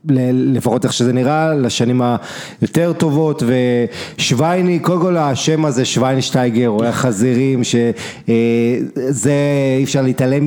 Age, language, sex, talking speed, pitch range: 30-49, English, male, 120 wpm, 125-150 Hz